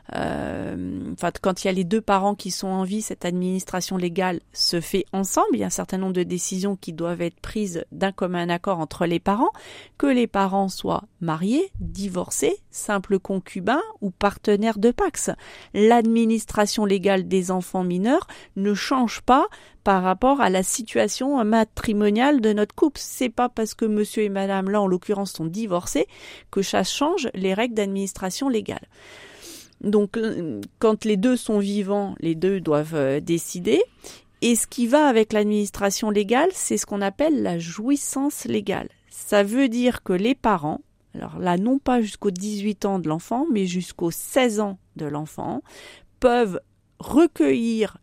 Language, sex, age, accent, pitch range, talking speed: French, female, 30-49, French, 185-235 Hz, 165 wpm